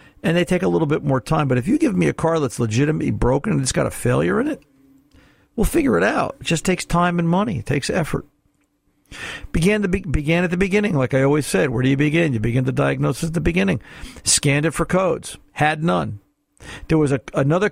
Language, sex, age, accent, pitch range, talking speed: English, male, 50-69, American, 135-175 Hz, 235 wpm